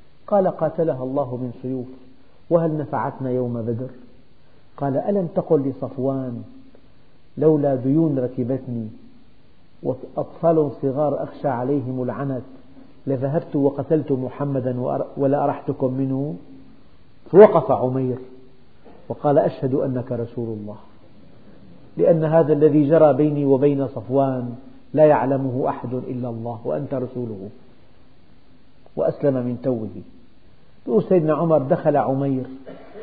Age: 50-69